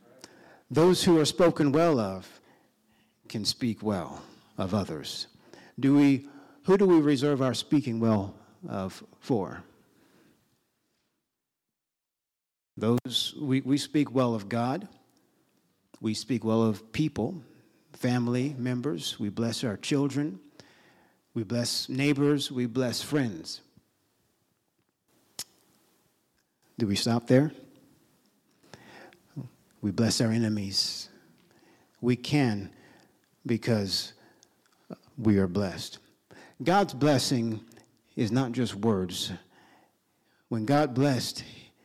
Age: 50-69